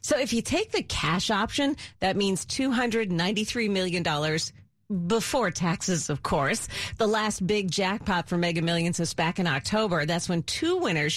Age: 40-59